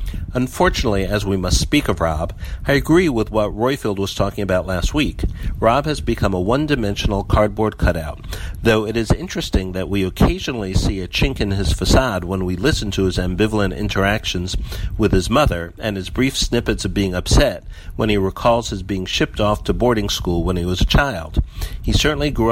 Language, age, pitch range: English, 60-79, 90-110 Hz